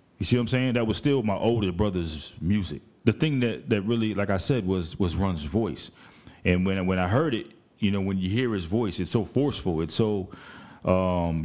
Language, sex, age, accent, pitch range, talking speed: English, male, 30-49, American, 90-105 Hz, 225 wpm